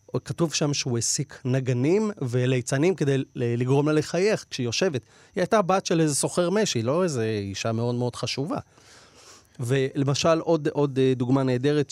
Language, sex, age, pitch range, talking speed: Hebrew, male, 30-49, 125-175 Hz, 150 wpm